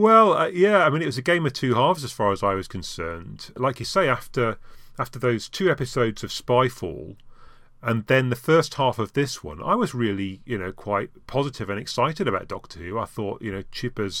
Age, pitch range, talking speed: 40-59, 100-125 Hz, 225 wpm